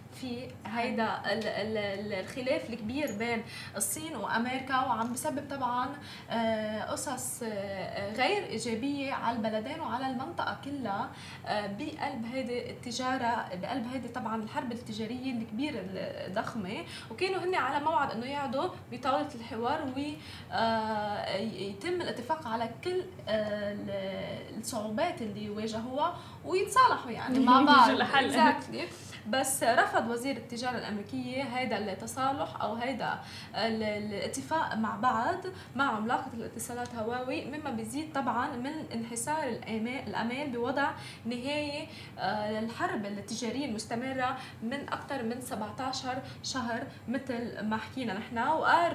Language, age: Arabic, 20-39